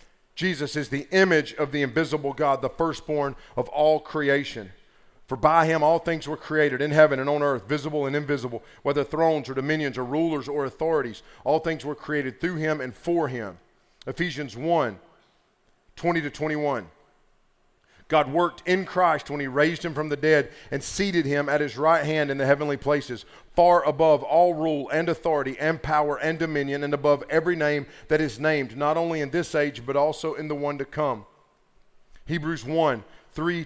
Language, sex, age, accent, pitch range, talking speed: English, male, 40-59, American, 140-165 Hz, 185 wpm